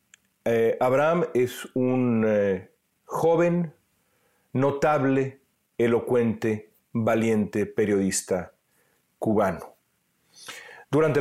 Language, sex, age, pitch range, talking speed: Spanish, male, 40-59, 110-150 Hz, 65 wpm